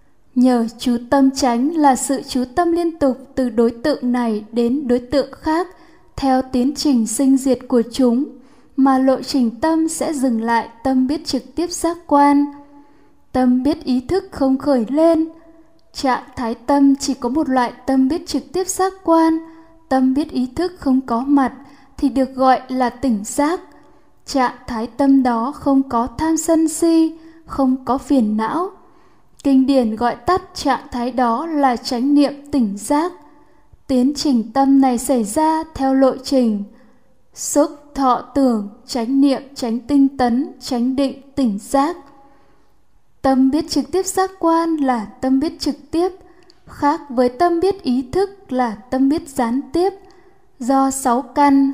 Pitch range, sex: 255-315 Hz, female